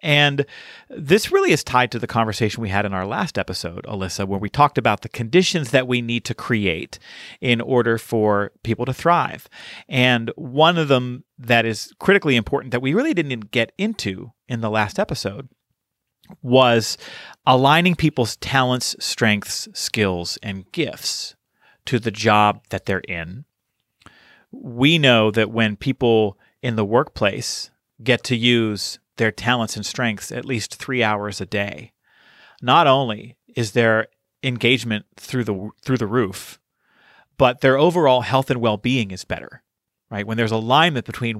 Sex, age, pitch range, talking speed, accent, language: male, 40-59, 110-135 Hz, 160 wpm, American, English